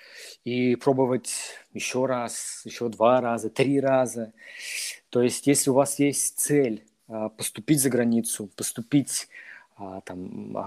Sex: male